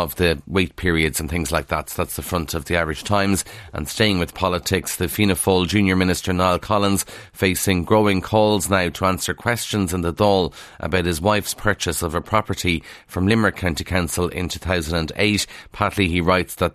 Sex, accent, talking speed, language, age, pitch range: male, Irish, 190 wpm, English, 30-49, 85-105 Hz